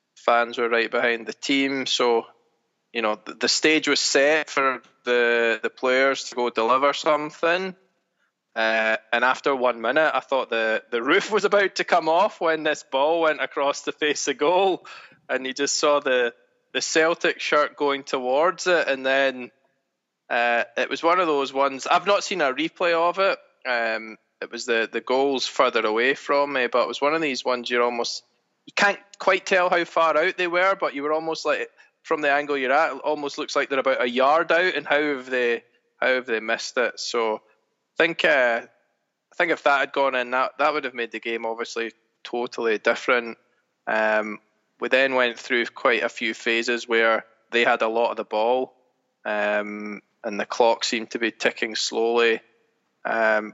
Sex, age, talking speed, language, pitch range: male, 20-39, 200 wpm, English, 115-160 Hz